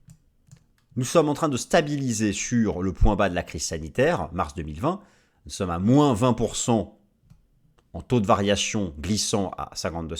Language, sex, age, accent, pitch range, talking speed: French, male, 30-49, French, 85-140 Hz, 165 wpm